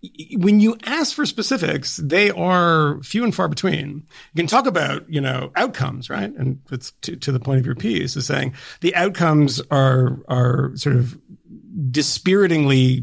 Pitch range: 135-170 Hz